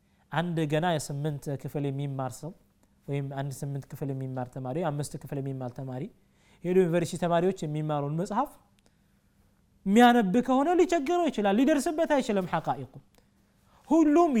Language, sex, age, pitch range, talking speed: Amharic, male, 20-39, 150-225 Hz, 115 wpm